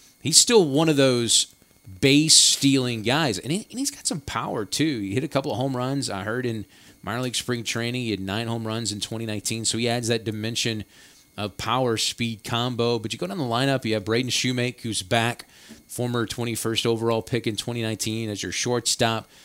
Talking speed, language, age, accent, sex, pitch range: 195 wpm, English, 30-49, American, male, 110-125 Hz